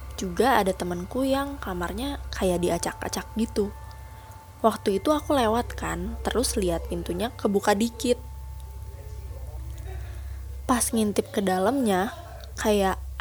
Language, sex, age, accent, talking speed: Indonesian, female, 20-39, native, 100 wpm